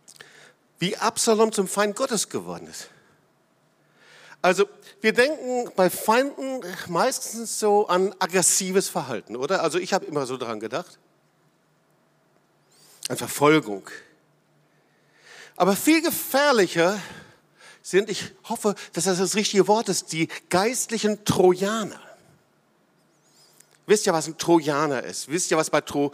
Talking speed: 120 wpm